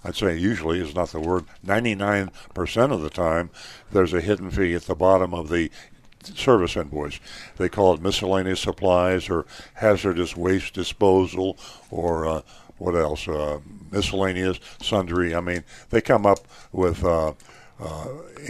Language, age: English, 60-79